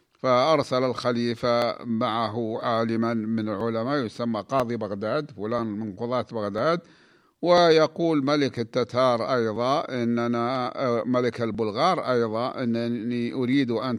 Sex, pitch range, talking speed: male, 115-140 Hz, 105 wpm